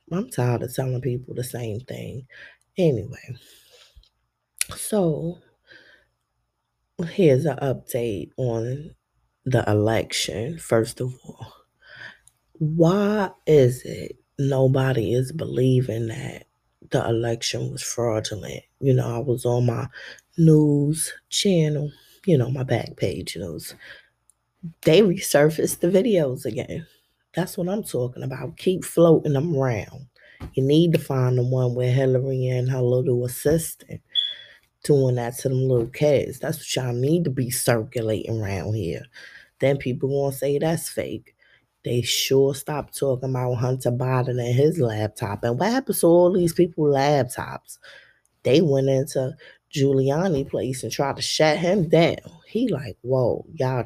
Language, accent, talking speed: English, American, 135 wpm